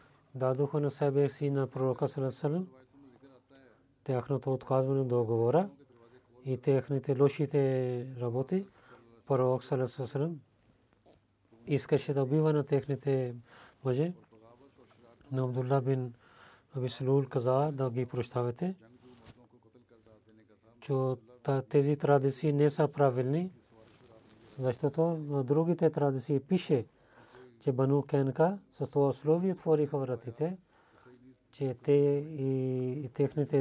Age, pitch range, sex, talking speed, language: 40-59, 125-145 Hz, male, 95 wpm, Bulgarian